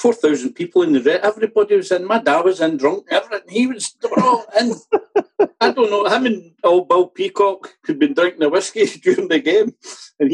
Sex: male